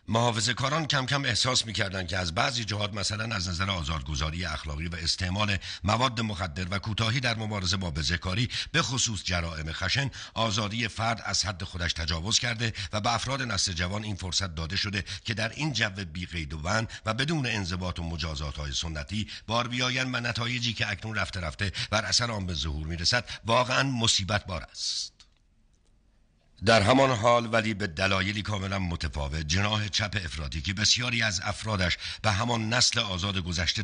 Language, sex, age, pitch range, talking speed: Persian, male, 60-79, 90-110 Hz, 170 wpm